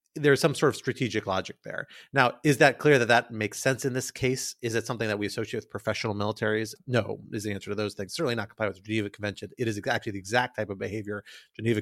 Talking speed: 255 wpm